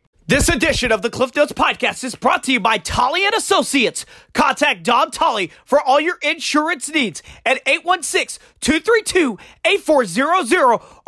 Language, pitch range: English, 245-345 Hz